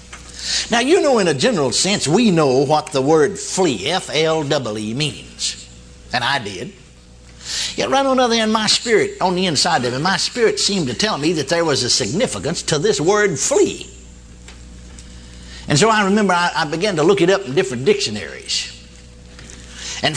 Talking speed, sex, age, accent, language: 190 wpm, male, 60-79, American, English